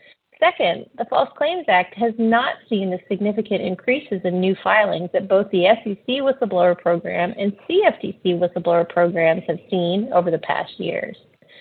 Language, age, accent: English, 30-49, American